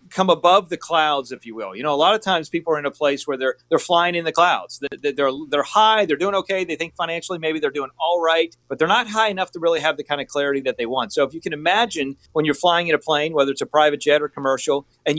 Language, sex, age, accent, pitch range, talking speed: English, male, 40-59, American, 140-175 Hz, 290 wpm